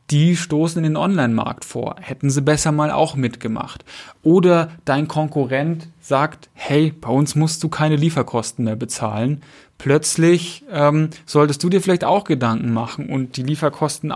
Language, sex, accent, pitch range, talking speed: German, male, German, 130-155 Hz, 155 wpm